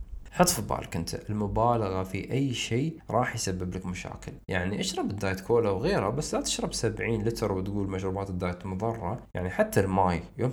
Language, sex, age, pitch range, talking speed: Arabic, male, 20-39, 90-110 Hz, 170 wpm